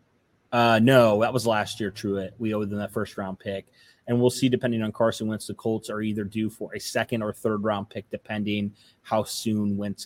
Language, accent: English, American